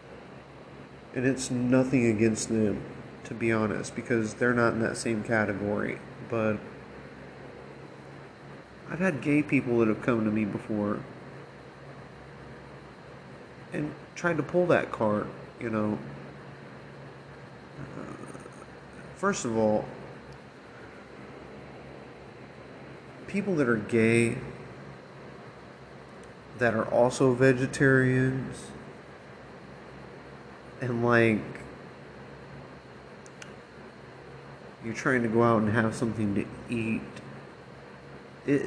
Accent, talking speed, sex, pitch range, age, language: American, 90 wpm, male, 105-130 Hz, 30-49, English